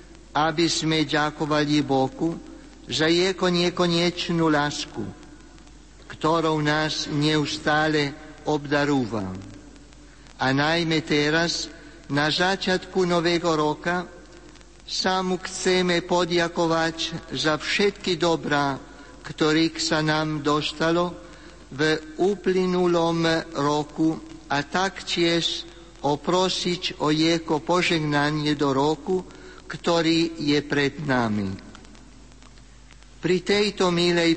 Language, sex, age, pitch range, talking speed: Slovak, male, 60-79, 150-180 Hz, 80 wpm